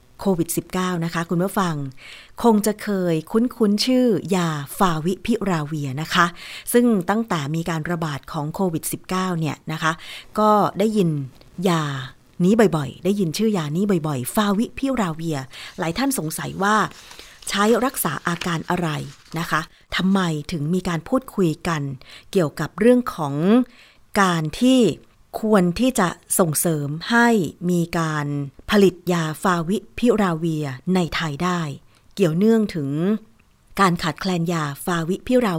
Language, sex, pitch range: Thai, female, 160-200 Hz